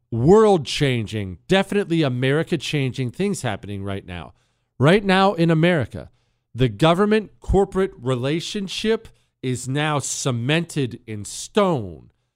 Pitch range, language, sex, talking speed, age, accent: 125-185 Hz, English, male, 90 wpm, 40-59, American